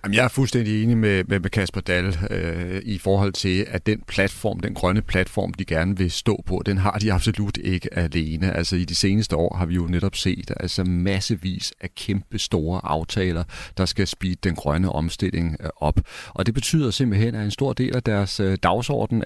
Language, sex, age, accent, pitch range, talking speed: Danish, male, 40-59, native, 90-110 Hz, 205 wpm